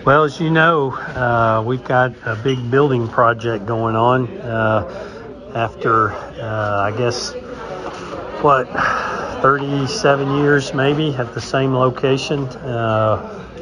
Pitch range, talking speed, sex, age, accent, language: 110-130 Hz, 120 wpm, male, 50-69, American, English